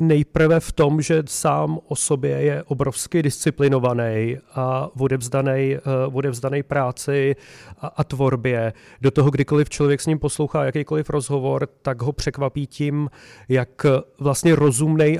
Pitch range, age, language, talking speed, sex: 130-145 Hz, 40-59, Czech, 135 wpm, male